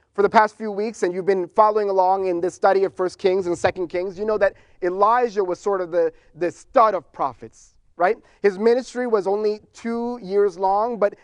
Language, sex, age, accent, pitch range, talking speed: English, male, 30-49, American, 185-235 Hz, 215 wpm